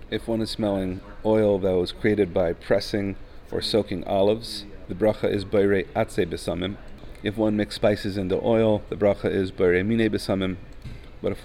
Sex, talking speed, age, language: male, 175 wpm, 40-59, English